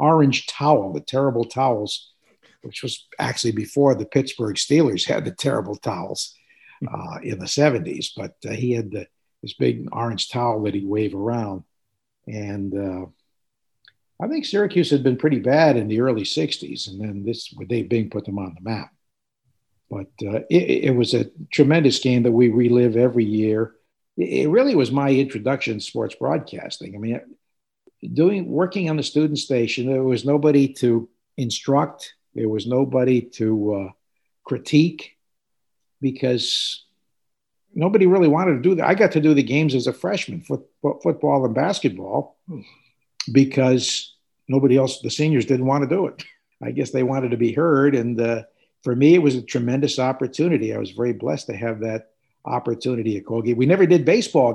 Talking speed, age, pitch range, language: 175 wpm, 50-69, 115-145 Hz, English